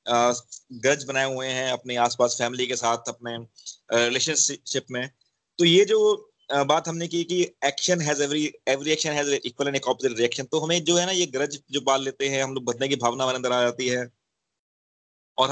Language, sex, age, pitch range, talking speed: Hindi, male, 30-49, 125-150 Hz, 50 wpm